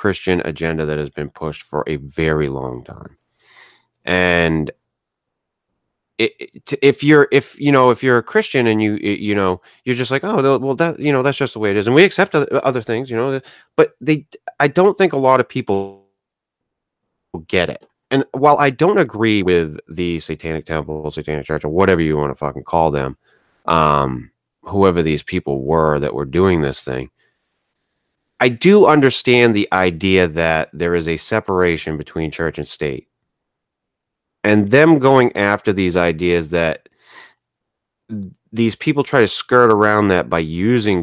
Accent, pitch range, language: American, 80-130 Hz, English